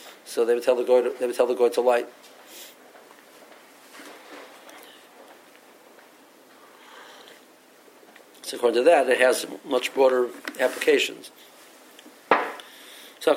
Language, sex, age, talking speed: English, male, 50-69, 110 wpm